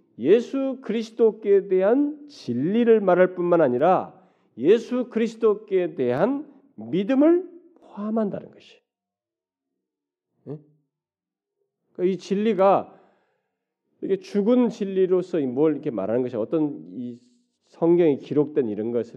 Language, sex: Korean, male